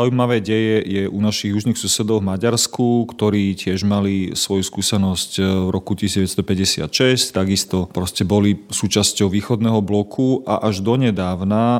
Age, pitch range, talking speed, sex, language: 40-59, 95-110 Hz, 130 wpm, male, Slovak